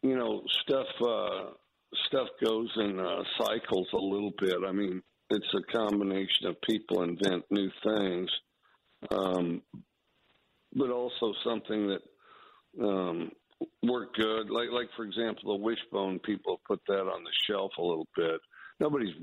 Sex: male